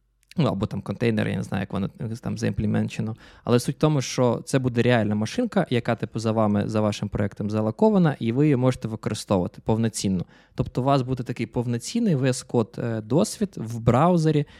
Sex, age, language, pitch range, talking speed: male, 20-39, Ukrainian, 115-165 Hz, 180 wpm